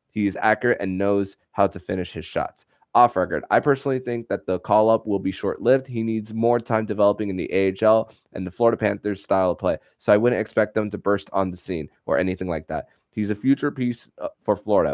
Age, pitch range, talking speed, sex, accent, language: 20-39, 100-115 Hz, 230 wpm, male, American, English